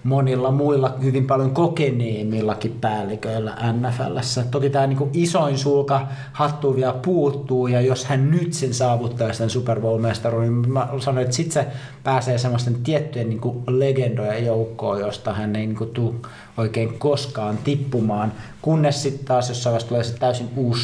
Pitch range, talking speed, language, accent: 115-145 Hz, 155 wpm, Finnish, native